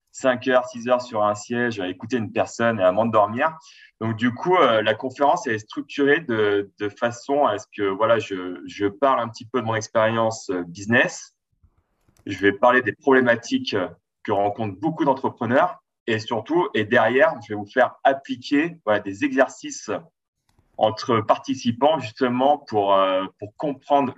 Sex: male